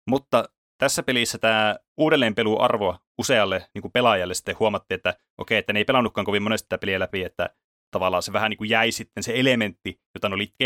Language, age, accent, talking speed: Finnish, 30-49, native, 185 wpm